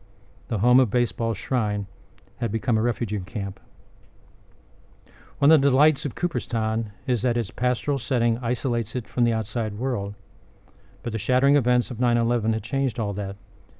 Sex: male